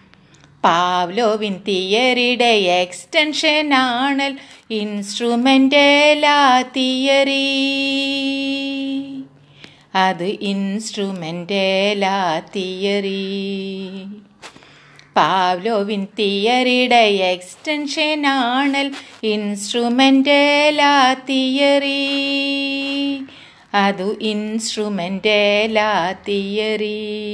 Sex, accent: female, native